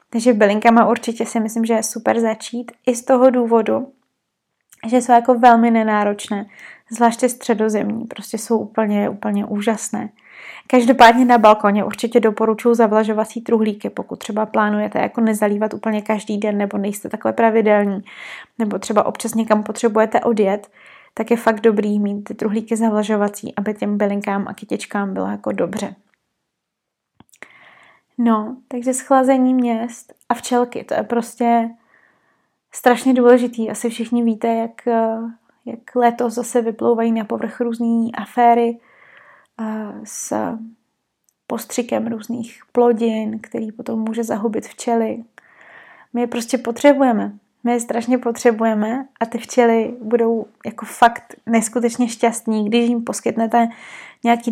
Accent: native